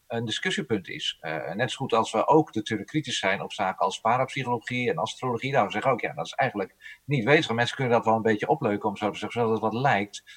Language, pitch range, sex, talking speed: Dutch, 115-155 Hz, male, 255 wpm